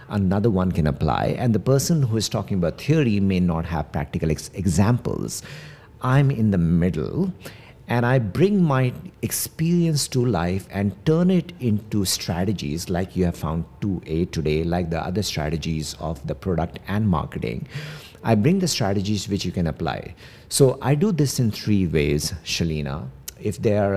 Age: 50-69